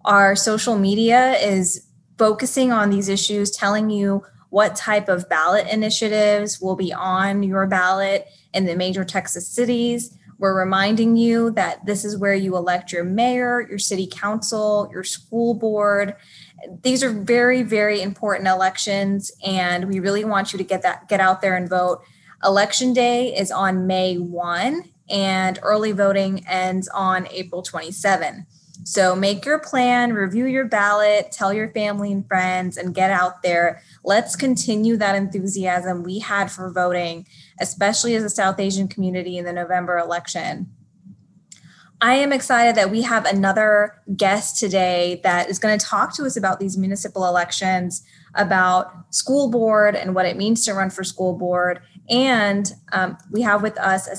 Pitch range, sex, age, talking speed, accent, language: 185-215 Hz, female, 10-29, 160 wpm, American, English